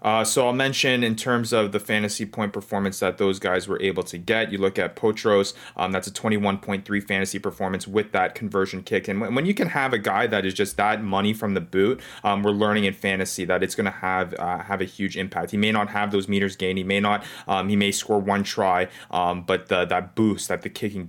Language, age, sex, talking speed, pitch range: English, 30-49, male, 240 wpm, 95-115 Hz